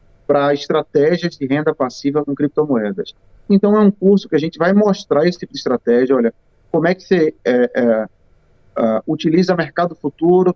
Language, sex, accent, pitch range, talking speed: Portuguese, male, Brazilian, 130-175 Hz, 175 wpm